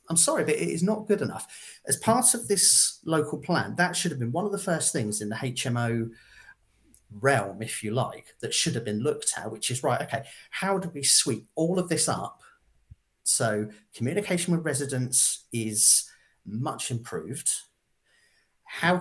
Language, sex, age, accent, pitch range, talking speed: English, male, 40-59, British, 115-150 Hz, 175 wpm